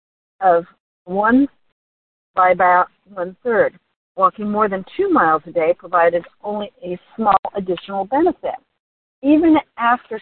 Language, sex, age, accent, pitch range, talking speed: English, female, 50-69, American, 180-225 Hz, 115 wpm